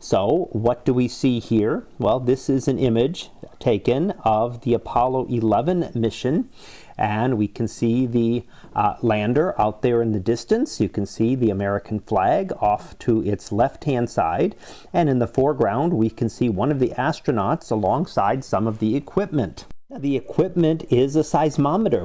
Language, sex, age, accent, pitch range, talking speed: English, male, 40-59, American, 115-145 Hz, 165 wpm